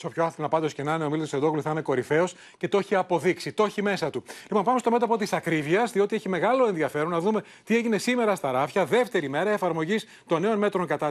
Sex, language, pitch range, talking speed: male, Greek, 170-230 Hz, 250 wpm